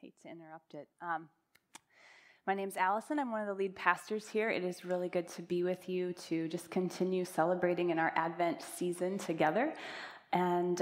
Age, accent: 20-39, American